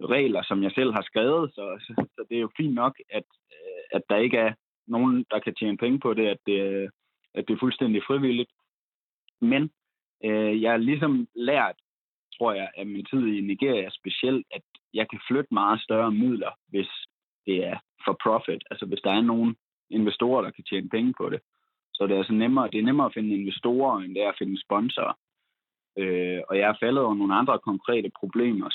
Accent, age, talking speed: native, 20-39, 205 wpm